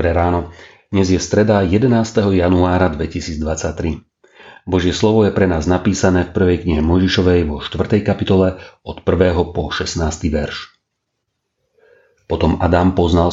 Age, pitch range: 40-59, 80-90 Hz